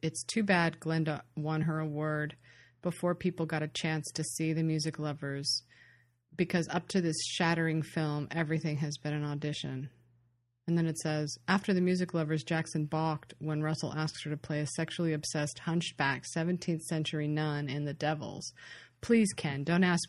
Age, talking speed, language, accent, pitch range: 30-49, 175 wpm, English, American, 145-165 Hz